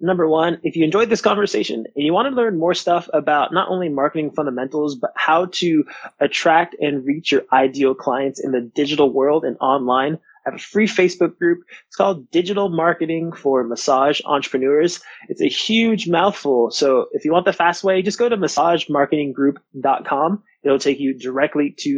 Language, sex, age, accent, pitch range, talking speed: English, male, 20-39, American, 140-185 Hz, 185 wpm